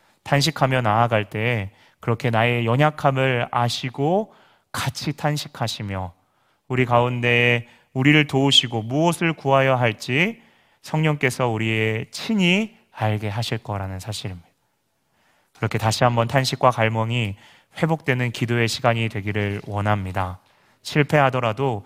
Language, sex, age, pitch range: Korean, male, 30-49, 110-155 Hz